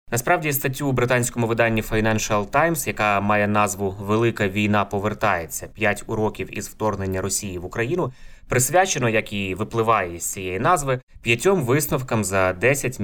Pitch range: 100-125 Hz